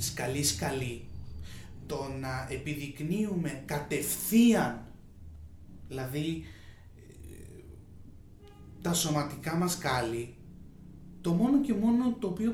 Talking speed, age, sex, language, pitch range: 75 wpm, 30-49, male, Greek, 115-155 Hz